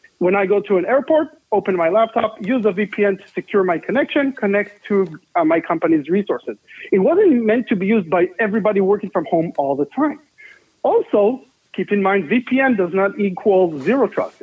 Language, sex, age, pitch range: English, male, 40-59, 175-250 Hz